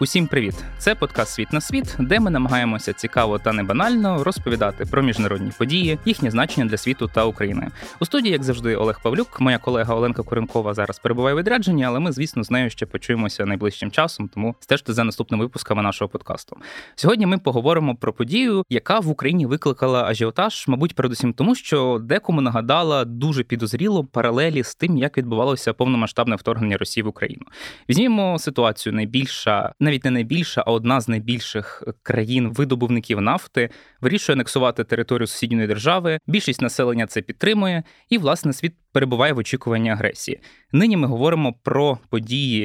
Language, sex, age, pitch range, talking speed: Ukrainian, male, 20-39, 115-150 Hz, 160 wpm